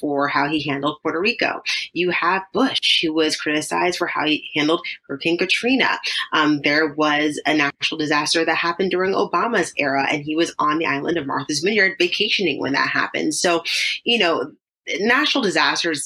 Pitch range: 150-180 Hz